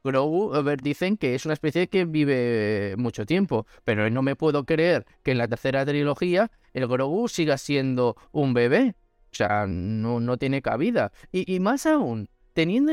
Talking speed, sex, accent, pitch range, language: 180 wpm, male, Spanish, 130-195 Hz, Spanish